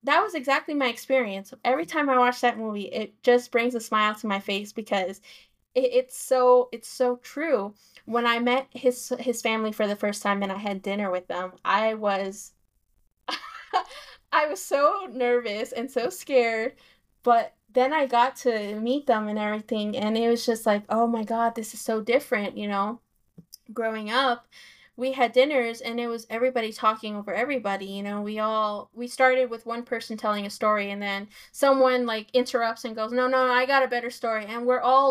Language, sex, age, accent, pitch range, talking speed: English, female, 10-29, American, 215-250 Hz, 200 wpm